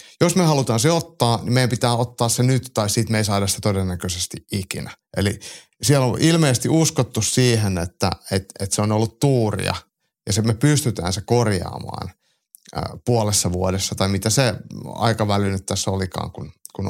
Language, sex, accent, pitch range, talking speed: Finnish, male, native, 105-130 Hz, 175 wpm